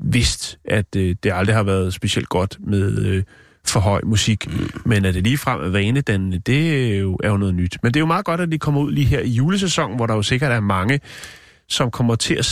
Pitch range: 100-135 Hz